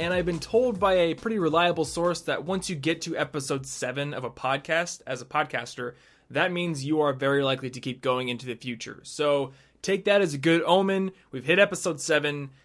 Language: English